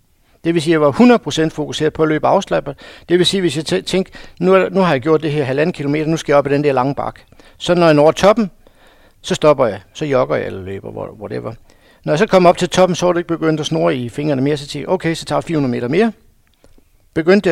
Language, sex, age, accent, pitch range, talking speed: Danish, male, 60-79, native, 130-165 Hz, 265 wpm